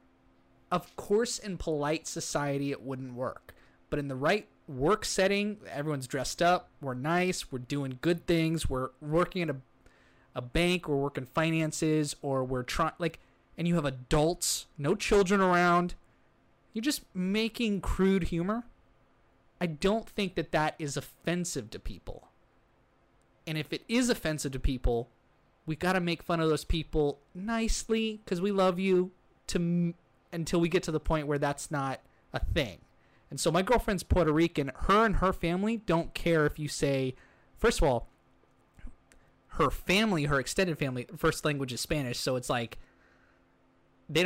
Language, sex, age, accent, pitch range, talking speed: English, male, 20-39, American, 135-185 Hz, 165 wpm